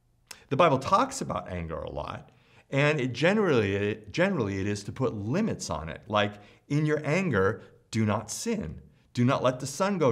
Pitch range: 100-150 Hz